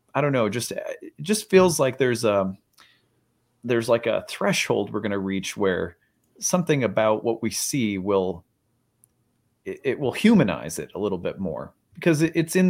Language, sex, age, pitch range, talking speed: English, male, 30-49, 110-155 Hz, 170 wpm